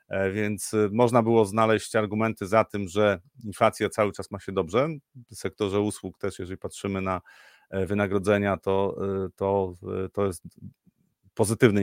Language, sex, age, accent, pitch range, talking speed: Polish, male, 30-49, native, 100-125 Hz, 130 wpm